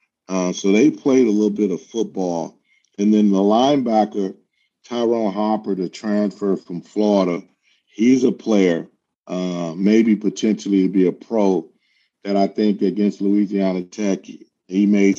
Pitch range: 95-115 Hz